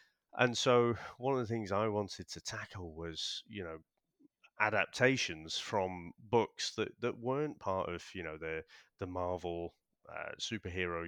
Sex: male